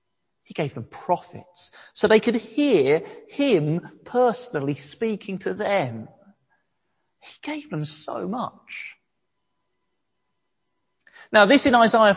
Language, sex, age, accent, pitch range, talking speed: English, male, 40-59, British, 165-280 Hz, 110 wpm